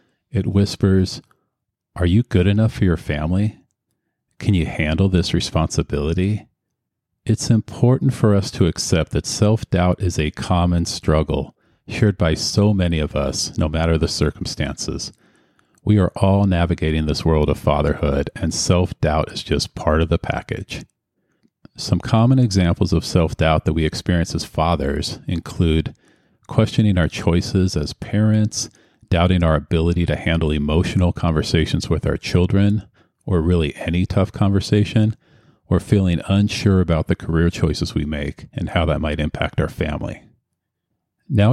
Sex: male